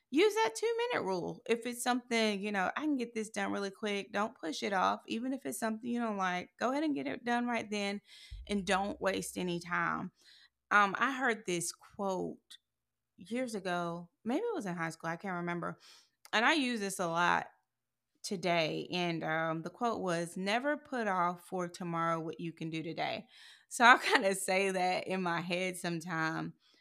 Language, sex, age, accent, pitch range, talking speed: English, female, 20-39, American, 170-220 Hz, 195 wpm